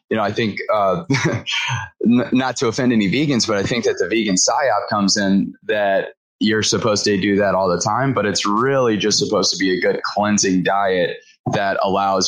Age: 20-39